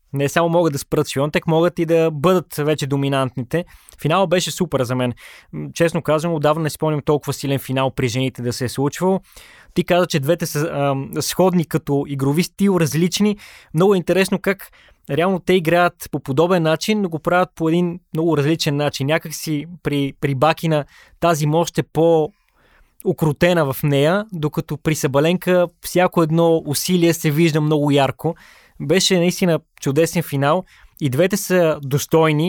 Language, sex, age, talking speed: Bulgarian, male, 20-39, 165 wpm